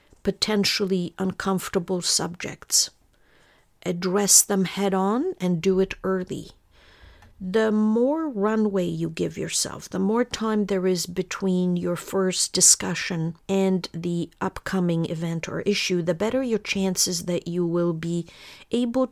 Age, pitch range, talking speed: 50-69, 170-200 Hz, 125 wpm